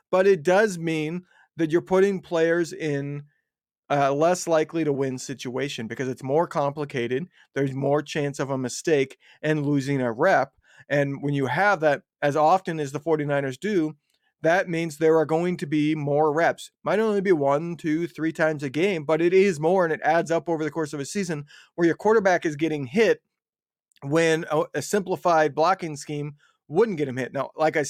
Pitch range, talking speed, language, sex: 150-205 Hz, 195 wpm, English, male